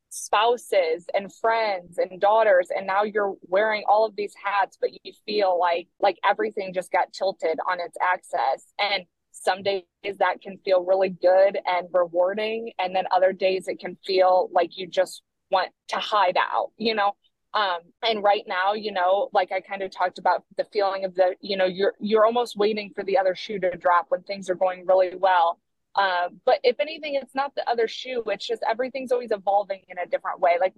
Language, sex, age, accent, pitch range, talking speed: English, female, 20-39, American, 185-225 Hz, 205 wpm